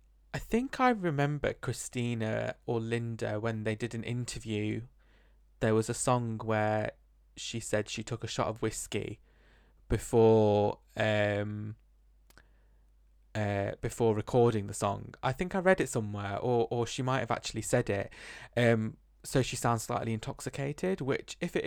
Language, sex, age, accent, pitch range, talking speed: English, male, 20-39, British, 105-120 Hz, 150 wpm